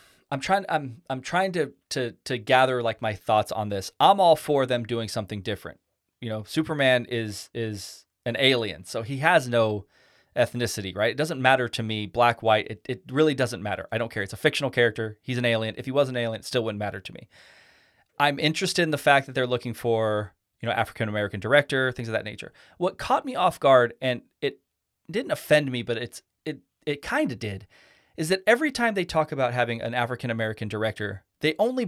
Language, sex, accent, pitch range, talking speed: English, male, American, 110-140 Hz, 215 wpm